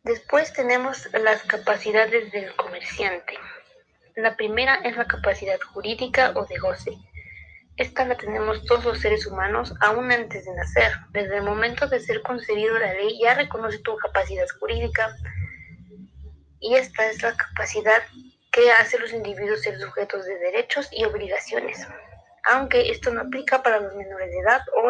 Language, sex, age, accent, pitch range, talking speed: Spanish, female, 20-39, Mexican, 200-270 Hz, 155 wpm